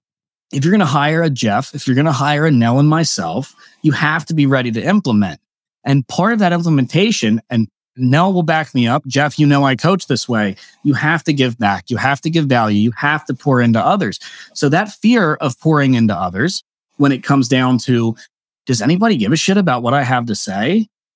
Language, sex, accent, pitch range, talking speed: English, male, American, 125-175 Hz, 225 wpm